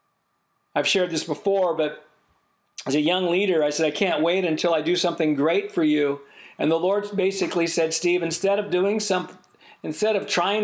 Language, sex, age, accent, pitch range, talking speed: English, male, 50-69, American, 160-185 Hz, 190 wpm